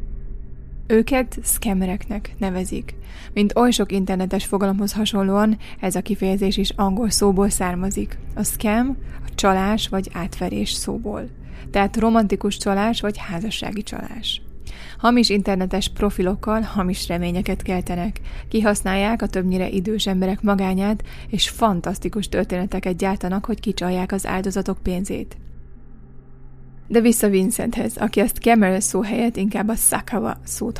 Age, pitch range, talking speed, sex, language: 20-39, 185-210 Hz, 120 wpm, female, Hungarian